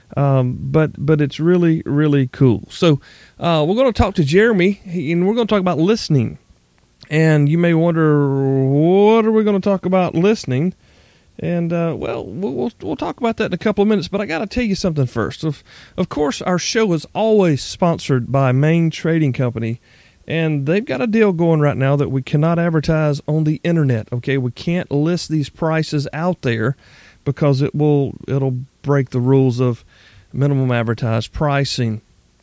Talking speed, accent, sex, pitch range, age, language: 190 wpm, American, male, 135-175 Hz, 40-59, English